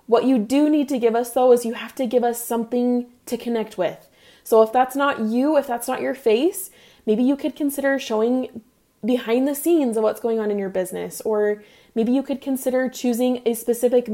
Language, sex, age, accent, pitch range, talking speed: English, female, 20-39, American, 220-255 Hz, 215 wpm